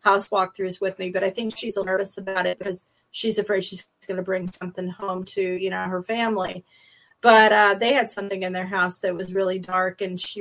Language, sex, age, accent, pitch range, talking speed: English, female, 40-59, American, 185-210 Hz, 230 wpm